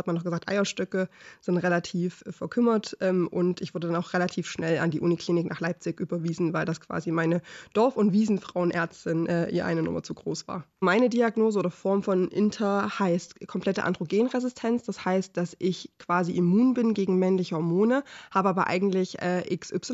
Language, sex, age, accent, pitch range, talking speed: German, female, 20-39, German, 175-205 Hz, 175 wpm